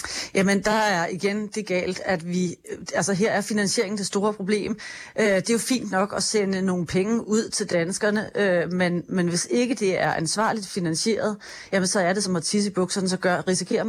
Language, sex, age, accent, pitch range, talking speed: Danish, female, 30-49, native, 180-210 Hz, 200 wpm